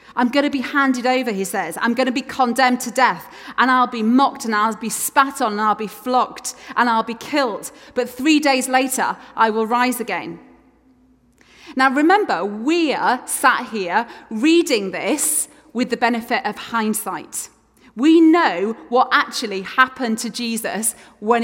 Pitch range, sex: 220-265 Hz, female